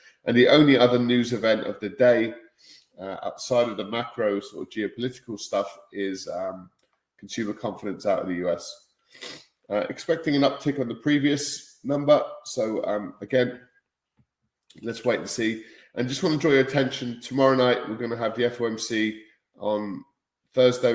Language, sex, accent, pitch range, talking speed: English, male, British, 105-125 Hz, 160 wpm